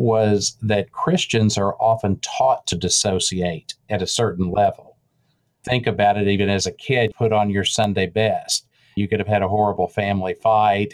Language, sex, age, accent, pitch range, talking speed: English, male, 50-69, American, 100-115 Hz, 175 wpm